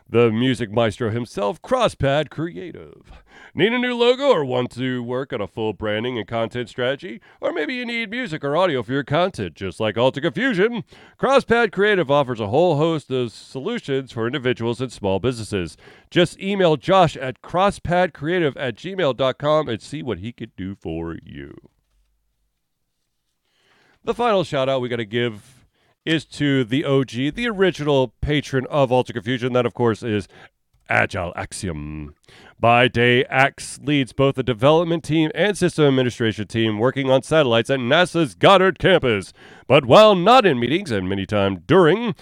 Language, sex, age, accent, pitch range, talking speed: English, male, 40-59, American, 115-170 Hz, 165 wpm